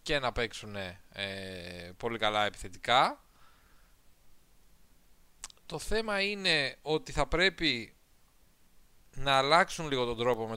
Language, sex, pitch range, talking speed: Greek, male, 105-140 Hz, 110 wpm